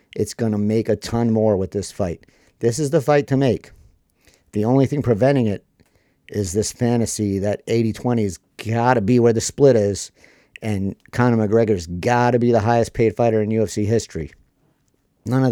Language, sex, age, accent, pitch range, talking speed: English, male, 50-69, American, 100-115 Hz, 175 wpm